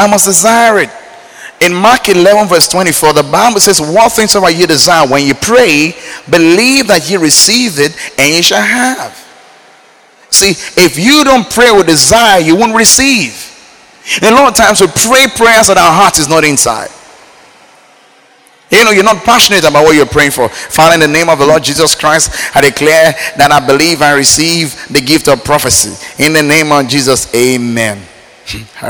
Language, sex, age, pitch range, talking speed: English, male, 30-49, 150-220 Hz, 185 wpm